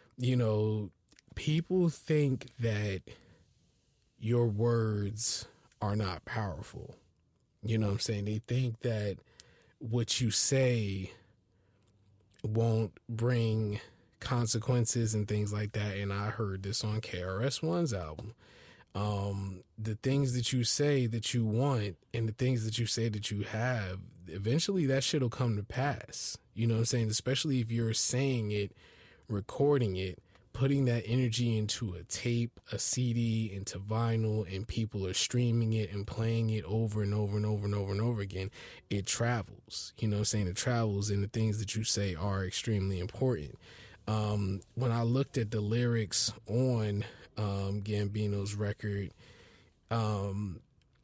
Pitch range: 100-120 Hz